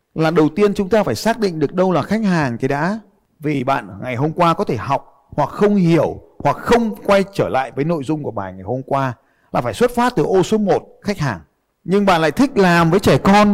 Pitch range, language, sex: 135-205 Hz, Vietnamese, male